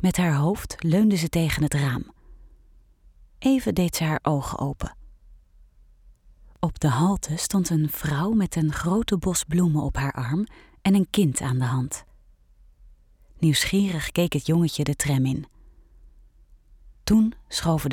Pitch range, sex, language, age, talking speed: 130-175 Hz, female, Dutch, 30-49, 145 wpm